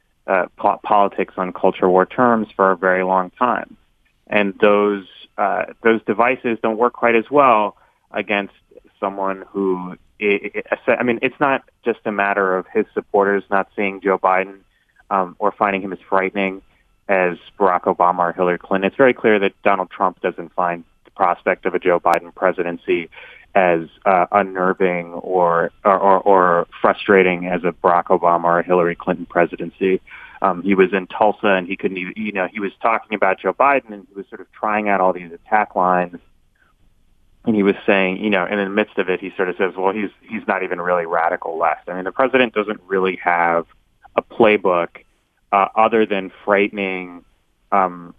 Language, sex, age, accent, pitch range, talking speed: English, male, 20-39, American, 90-105 Hz, 180 wpm